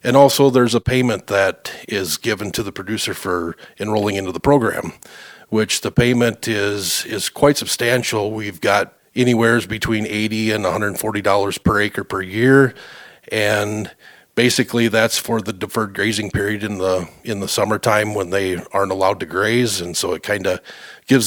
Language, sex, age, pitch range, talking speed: English, male, 40-59, 95-115 Hz, 170 wpm